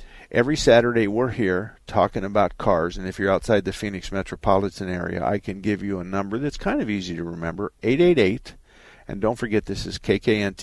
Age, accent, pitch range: 50-69, American, 90-105 Hz